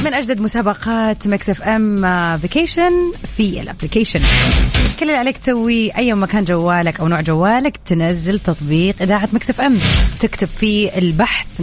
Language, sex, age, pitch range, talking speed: English, female, 30-49, 175-235 Hz, 145 wpm